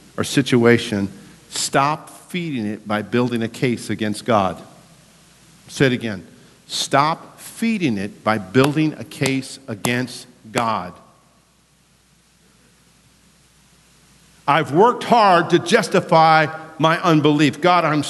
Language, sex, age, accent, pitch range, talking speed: English, male, 50-69, American, 135-175 Hz, 110 wpm